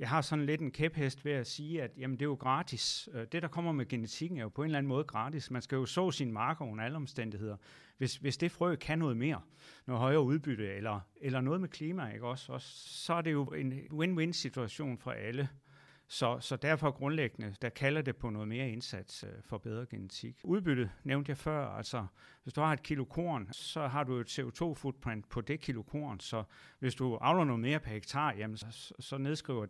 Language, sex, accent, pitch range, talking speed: Danish, male, native, 120-155 Hz, 225 wpm